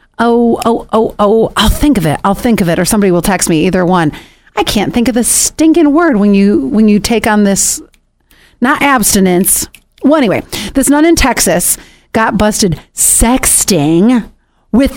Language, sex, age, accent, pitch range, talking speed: English, female, 40-59, American, 210-315 Hz, 180 wpm